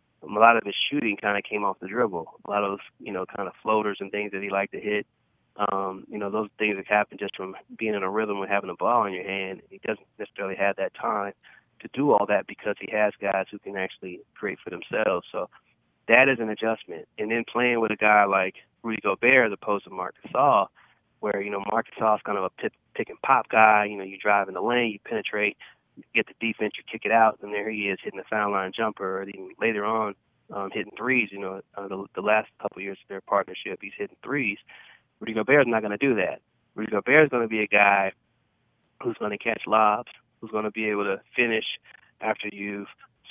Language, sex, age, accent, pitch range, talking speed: English, male, 20-39, American, 100-115 Hz, 240 wpm